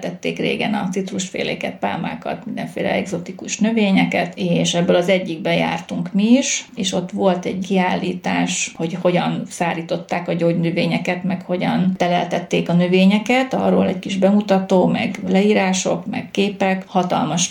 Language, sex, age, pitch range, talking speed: Hungarian, female, 30-49, 175-195 Hz, 130 wpm